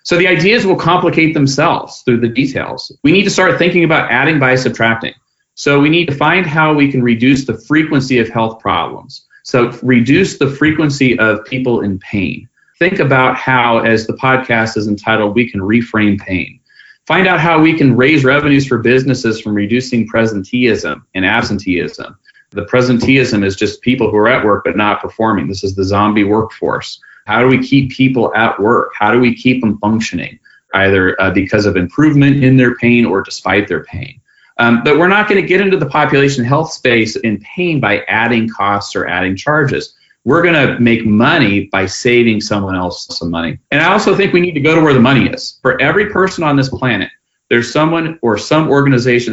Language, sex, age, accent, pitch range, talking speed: English, male, 30-49, American, 105-145 Hz, 195 wpm